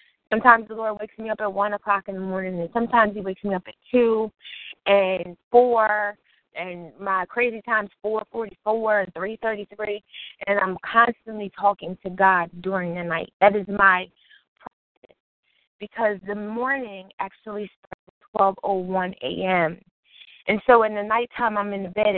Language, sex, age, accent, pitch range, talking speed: English, female, 20-39, American, 190-220 Hz, 175 wpm